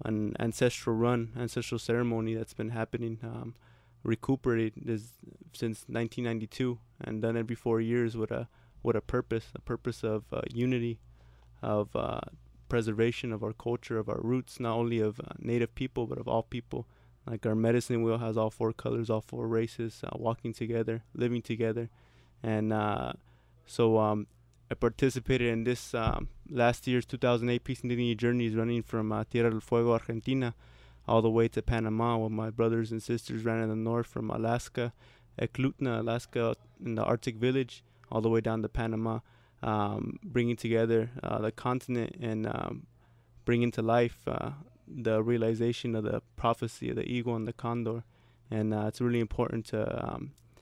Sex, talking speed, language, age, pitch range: male, 170 wpm, English, 20-39, 110-120 Hz